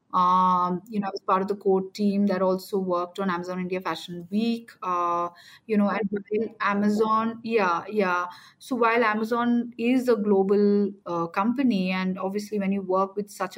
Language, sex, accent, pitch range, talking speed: English, female, Indian, 185-220 Hz, 175 wpm